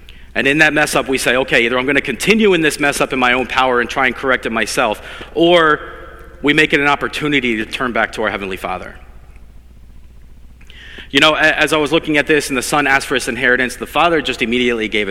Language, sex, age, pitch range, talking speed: English, male, 30-49, 115-150 Hz, 240 wpm